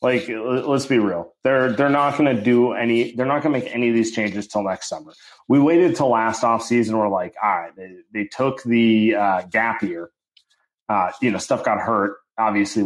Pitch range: 105-125 Hz